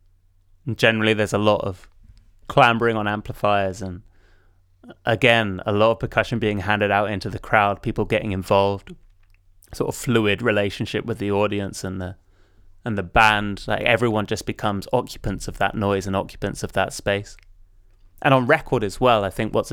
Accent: British